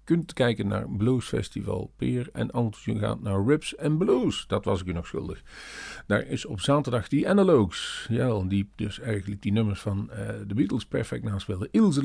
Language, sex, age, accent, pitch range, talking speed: Dutch, male, 50-69, Dutch, 100-135 Hz, 205 wpm